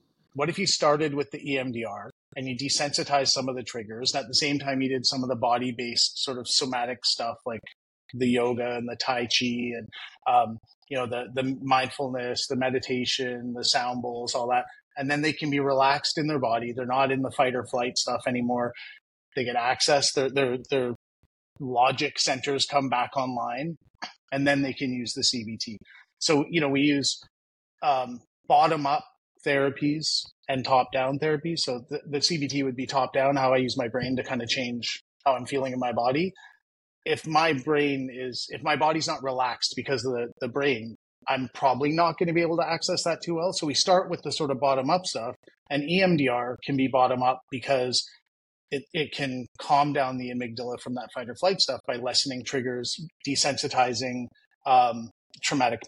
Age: 30-49